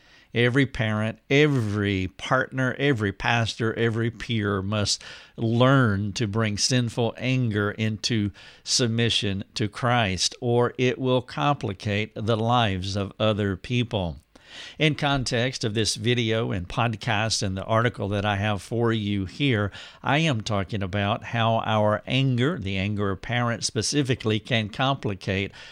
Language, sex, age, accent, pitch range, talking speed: English, male, 50-69, American, 105-125 Hz, 135 wpm